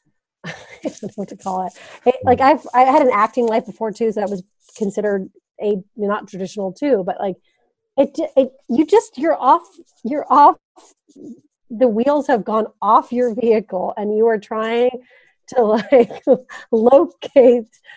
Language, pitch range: English, 210-285 Hz